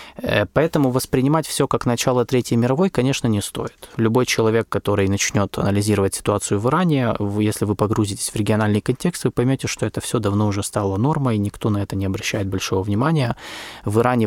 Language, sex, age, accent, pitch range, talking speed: Russian, male, 20-39, native, 105-135 Hz, 175 wpm